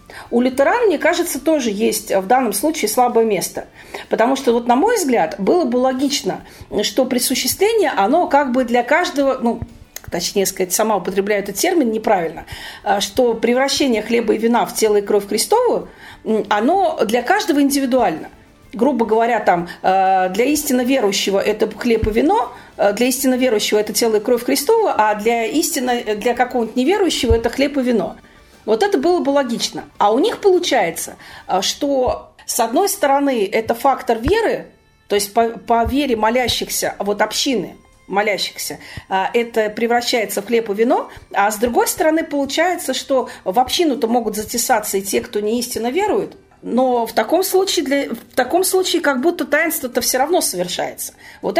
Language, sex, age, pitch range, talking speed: Russian, female, 40-59, 220-305 Hz, 155 wpm